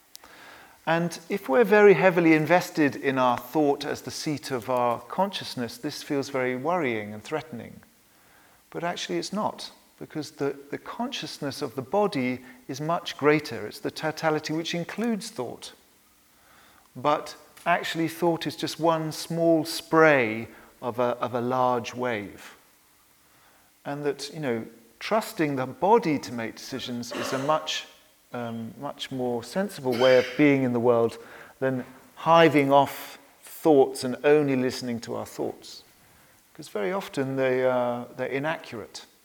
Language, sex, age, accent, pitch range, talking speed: English, male, 40-59, British, 120-155 Hz, 145 wpm